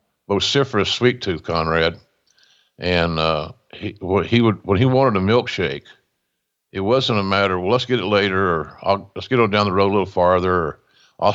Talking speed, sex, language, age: 200 wpm, male, English, 50-69